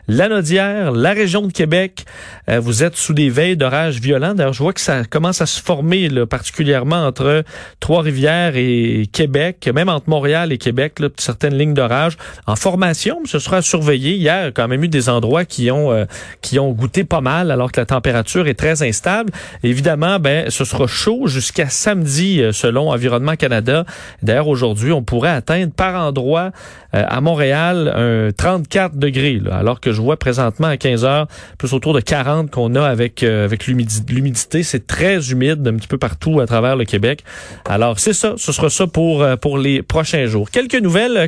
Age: 40-59